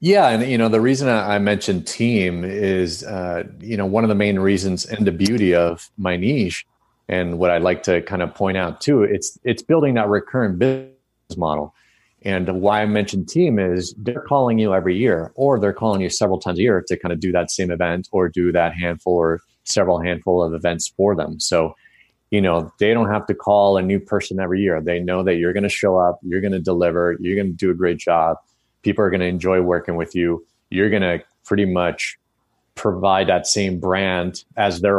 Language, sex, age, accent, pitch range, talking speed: English, male, 30-49, American, 90-105 Hz, 220 wpm